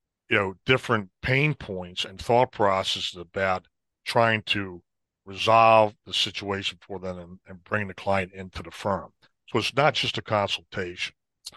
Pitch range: 95-120 Hz